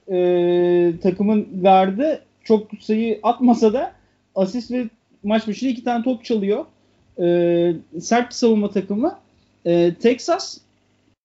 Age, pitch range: 40-59, 175-245 Hz